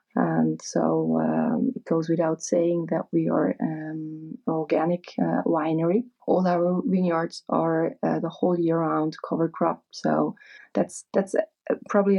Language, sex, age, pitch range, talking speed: English, female, 30-49, 165-185 Hz, 155 wpm